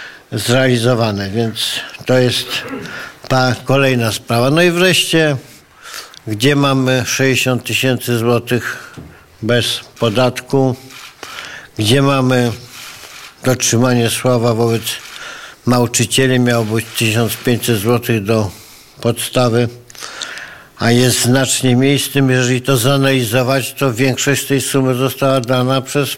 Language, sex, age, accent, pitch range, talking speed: Polish, male, 50-69, native, 115-130 Hz, 100 wpm